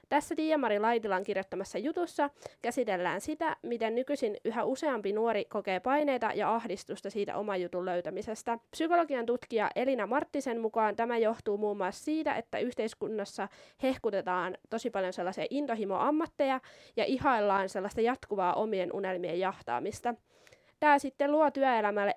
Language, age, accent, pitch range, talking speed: Finnish, 20-39, native, 200-275 Hz, 130 wpm